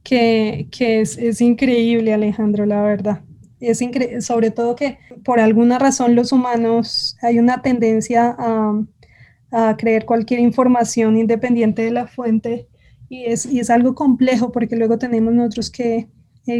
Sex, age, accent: female, 20-39, Colombian